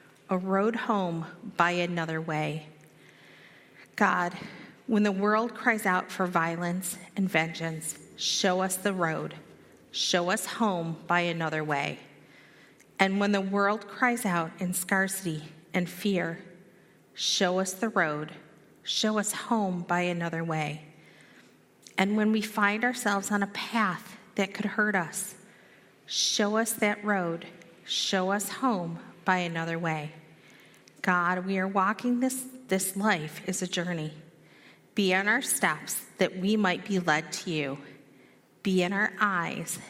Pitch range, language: 165-205 Hz, English